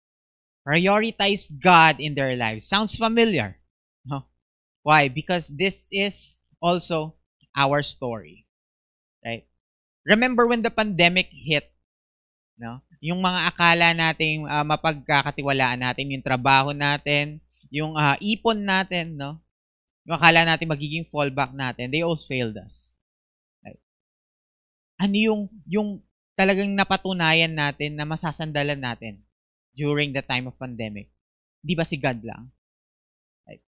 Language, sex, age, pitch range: English, male, 20-39, 120-180 Hz